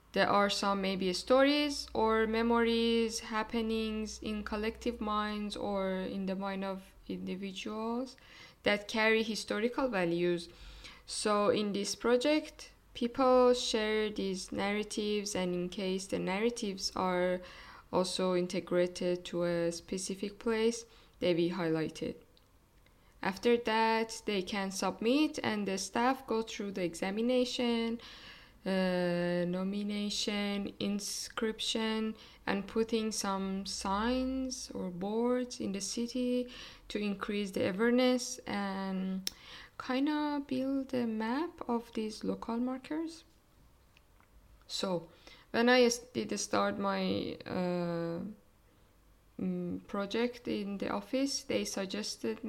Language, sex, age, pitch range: English, female, 10-29, 190-235 Hz